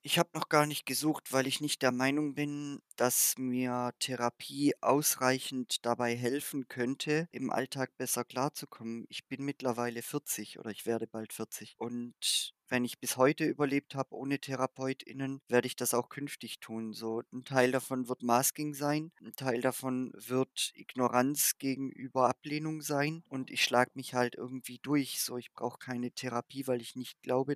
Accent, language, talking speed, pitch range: German, German, 170 wpm, 125-145 Hz